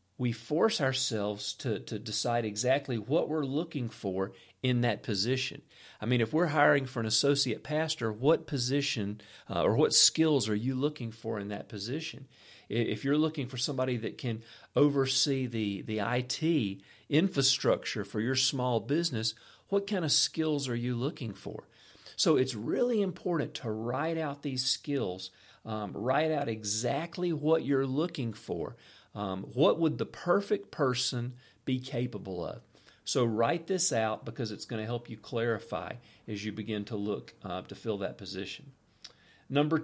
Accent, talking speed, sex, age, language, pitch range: American, 165 wpm, male, 50-69, English, 110-155 Hz